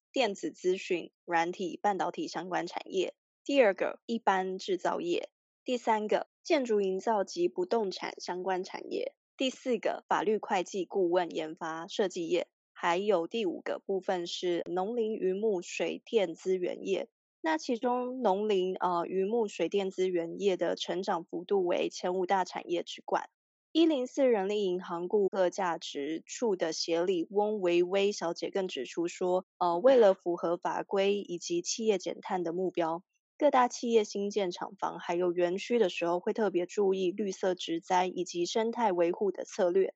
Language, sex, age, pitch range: Chinese, female, 20-39, 180-230 Hz